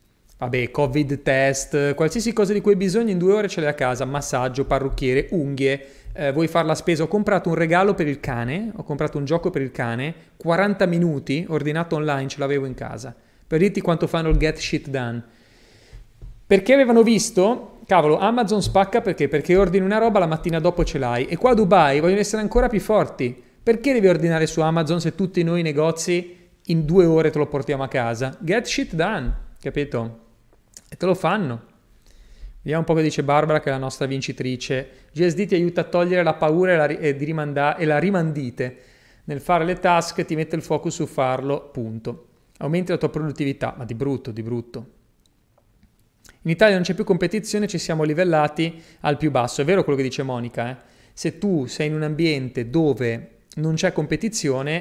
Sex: male